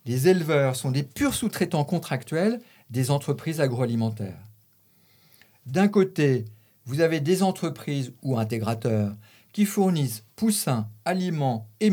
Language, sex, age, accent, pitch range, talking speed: French, male, 50-69, French, 115-180 Hz, 115 wpm